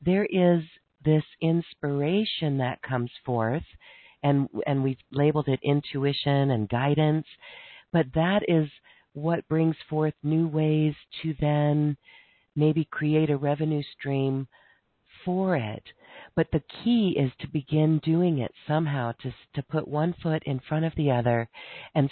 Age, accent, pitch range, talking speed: 50-69, American, 135-160 Hz, 140 wpm